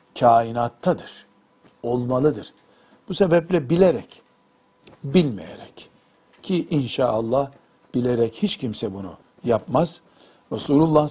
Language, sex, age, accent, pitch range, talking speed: Turkish, male, 60-79, native, 125-160 Hz, 75 wpm